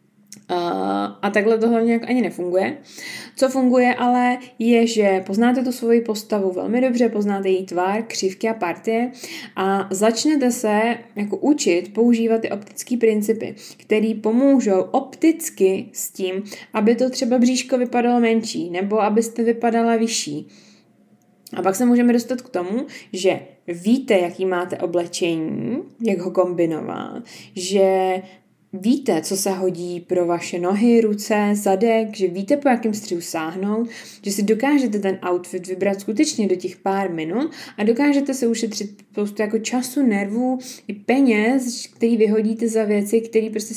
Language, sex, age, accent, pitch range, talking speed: Czech, female, 20-39, native, 195-250 Hz, 145 wpm